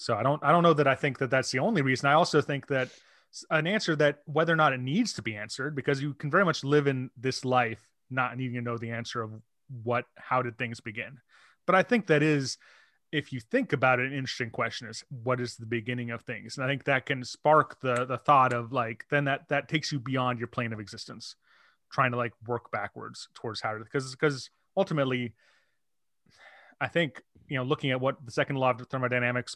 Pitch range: 115-135 Hz